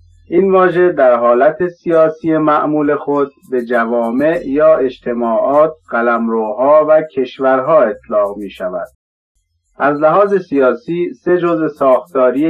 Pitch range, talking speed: 125-165 Hz, 110 wpm